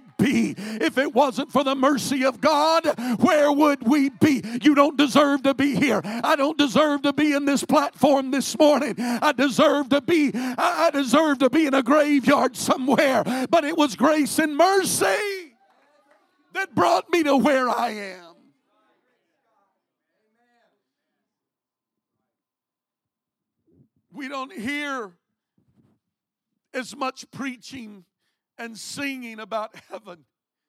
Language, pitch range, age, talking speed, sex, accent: English, 230-290 Hz, 50-69, 125 wpm, male, American